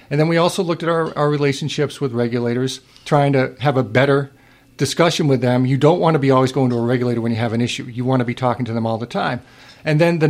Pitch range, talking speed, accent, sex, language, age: 125-145 Hz, 275 wpm, American, male, English, 50-69